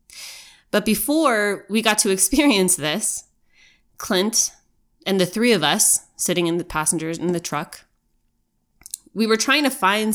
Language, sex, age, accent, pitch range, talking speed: English, female, 20-39, American, 170-215 Hz, 150 wpm